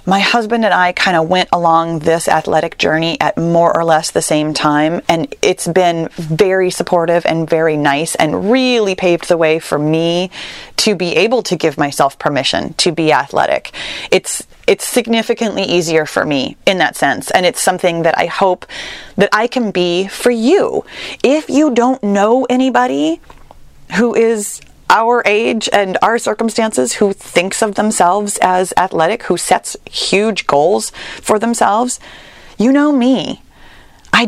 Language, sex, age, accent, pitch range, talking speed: English, female, 30-49, American, 165-230 Hz, 160 wpm